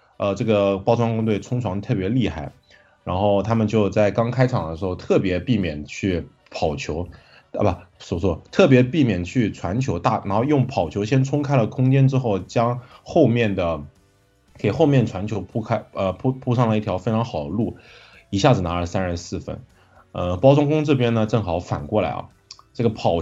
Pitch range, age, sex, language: 95-125 Hz, 20-39, male, Chinese